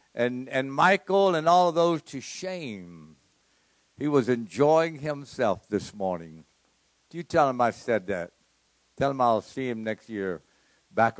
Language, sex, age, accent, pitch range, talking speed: English, male, 60-79, American, 110-160 Hz, 160 wpm